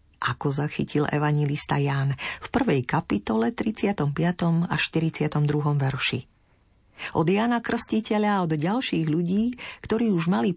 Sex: female